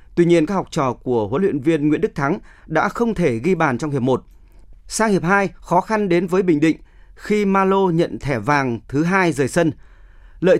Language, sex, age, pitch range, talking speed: Vietnamese, male, 30-49, 140-185 Hz, 220 wpm